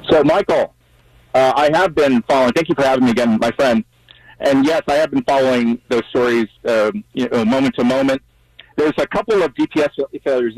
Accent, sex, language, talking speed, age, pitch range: American, male, English, 200 wpm, 40-59, 120-165 Hz